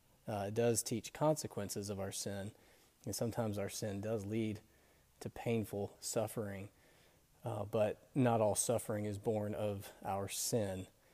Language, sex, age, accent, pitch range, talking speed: English, male, 30-49, American, 105-120 Hz, 145 wpm